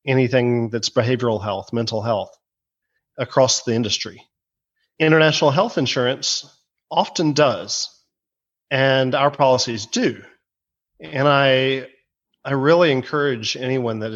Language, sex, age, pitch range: English, male, 40-59, 120-145 Hz